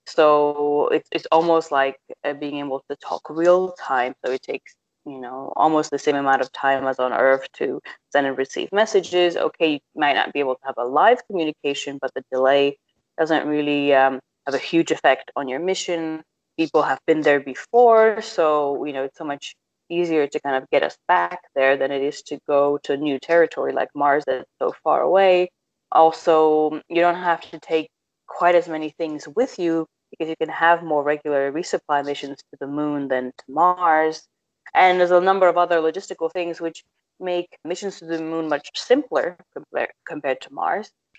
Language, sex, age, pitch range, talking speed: English, female, 20-39, 140-175 Hz, 190 wpm